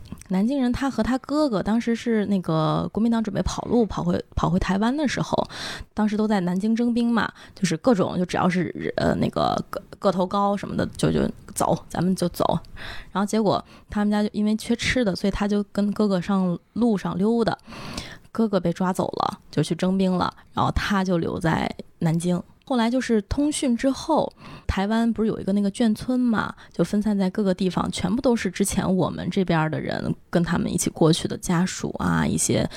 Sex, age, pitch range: female, 20-39, 180-225 Hz